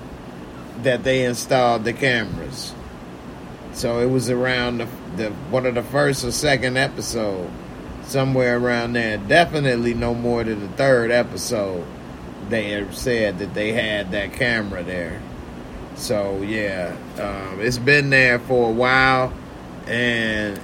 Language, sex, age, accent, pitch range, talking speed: English, male, 30-49, American, 95-130 Hz, 135 wpm